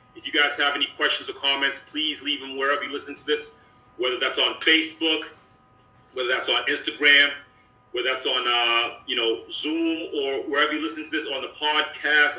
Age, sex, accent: 30-49, male, American